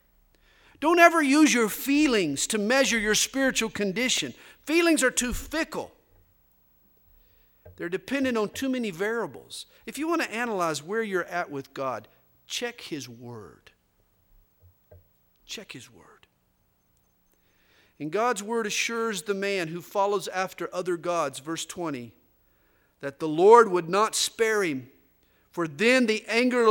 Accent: American